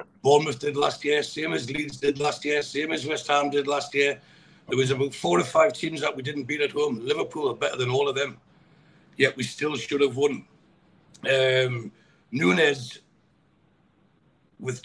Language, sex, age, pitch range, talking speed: English, male, 60-79, 130-150 Hz, 185 wpm